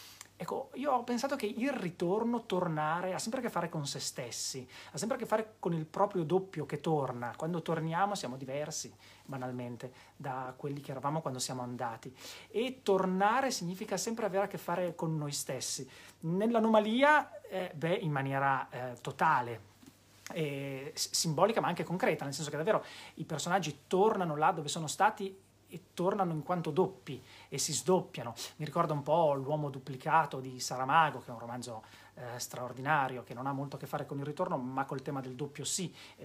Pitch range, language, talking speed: 135-180 Hz, Italian, 185 wpm